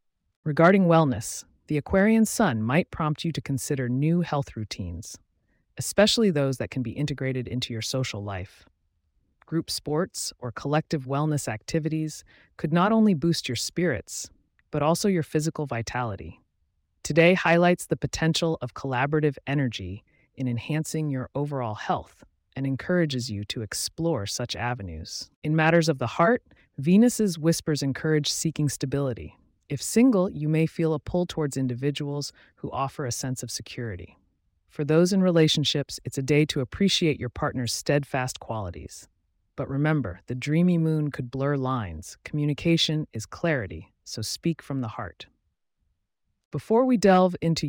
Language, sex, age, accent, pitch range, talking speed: English, female, 30-49, American, 115-160 Hz, 145 wpm